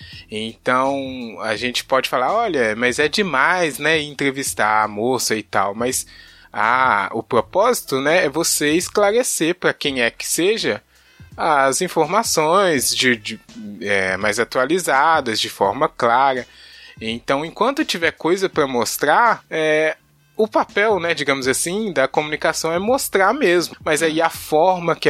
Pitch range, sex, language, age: 125-165 Hz, male, Portuguese, 20-39